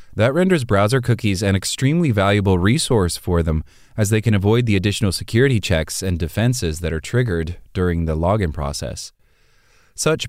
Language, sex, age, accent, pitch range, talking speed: English, male, 30-49, American, 90-115 Hz, 165 wpm